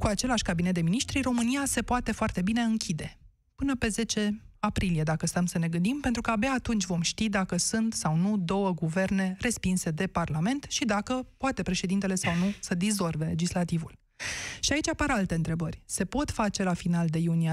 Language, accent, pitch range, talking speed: Romanian, native, 175-215 Hz, 190 wpm